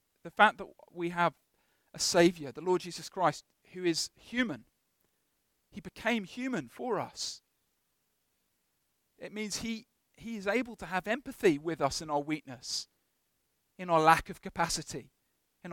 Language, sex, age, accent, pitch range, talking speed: English, male, 40-59, British, 165-230 Hz, 150 wpm